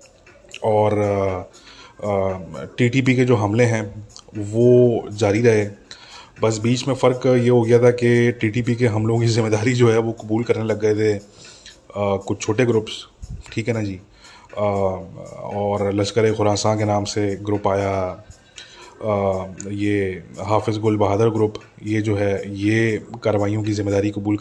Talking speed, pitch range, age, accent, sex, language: 140 wpm, 100-115 Hz, 20-39, Indian, male, English